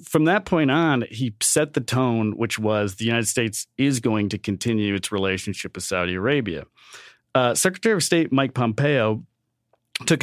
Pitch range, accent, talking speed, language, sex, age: 105-135 Hz, American, 170 wpm, English, male, 40-59